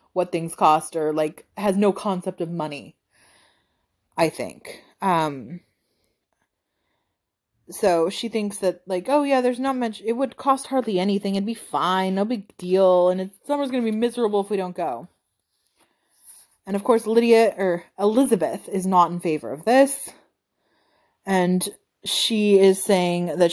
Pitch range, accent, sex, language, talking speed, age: 180-225 Hz, American, female, English, 155 wpm, 30-49